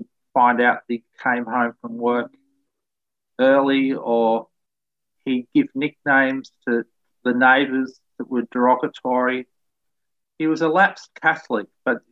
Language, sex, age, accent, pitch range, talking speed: English, male, 40-59, Australian, 120-145 Hz, 125 wpm